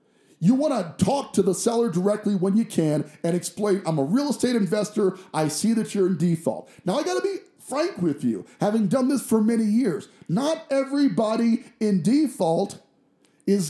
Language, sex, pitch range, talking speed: English, male, 180-235 Hz, 190 wpm